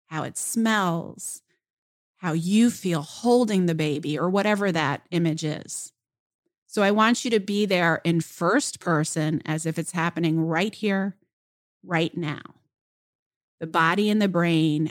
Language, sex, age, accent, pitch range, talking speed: English, female, 40-59, American, 160-190 Hz, 150 wpm